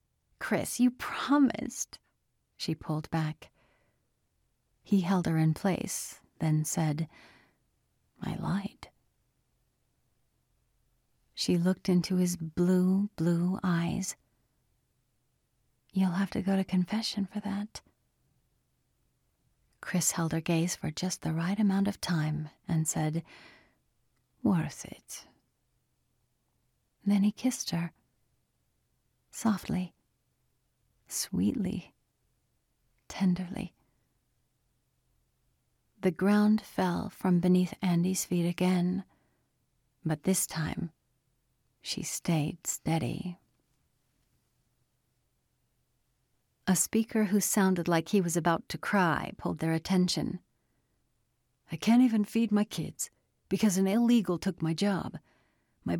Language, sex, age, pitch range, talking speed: English, female, 40-59, 140-195 Hz, 100 wpm